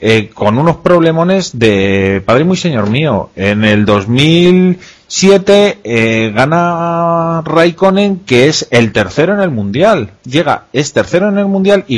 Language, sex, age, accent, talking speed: Spanish, male, 30-49, Spanish, 145 wpm